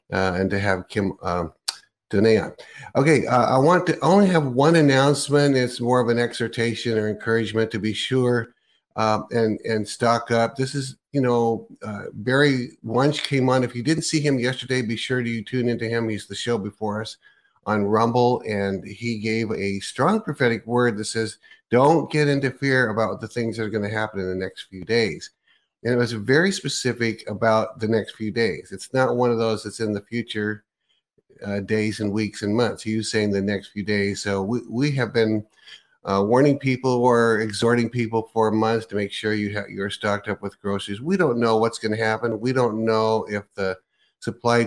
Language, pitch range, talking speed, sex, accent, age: English, 105-120 Hz, 210 wpm, male, American, 50-69